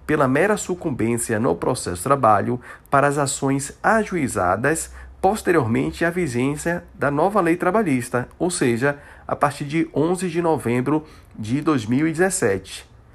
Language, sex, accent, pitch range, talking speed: Portuguese, male, Brazilian, 120-170 Hz, 130 wpm